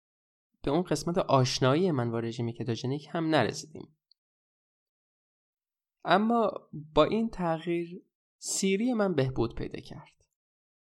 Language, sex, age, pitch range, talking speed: Persian, male, 20-39, 130-180 Hz, 105 wpm